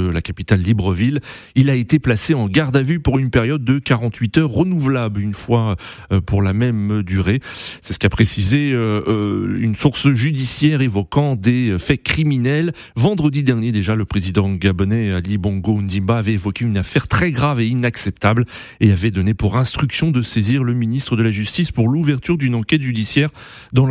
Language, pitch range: French, 110-150 Hz